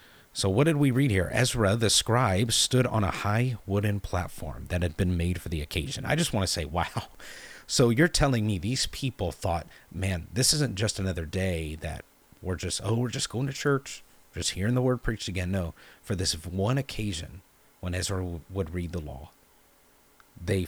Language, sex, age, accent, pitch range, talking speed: English, male, 30-49, American, 90-115 Hz, 195 wpm